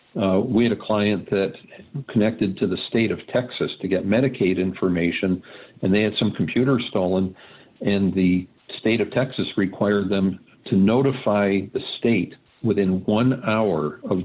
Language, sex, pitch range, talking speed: English, male, 95-115 Hz, 155 wpm